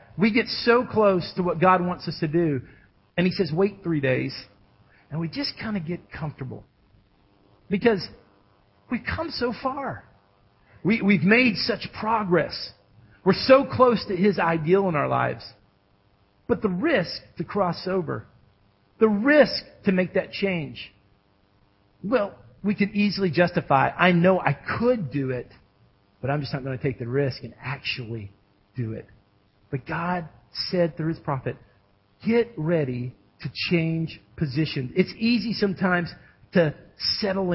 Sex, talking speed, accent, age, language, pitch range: male, 150 wpm, American, 50-69, English, 125-190 Hz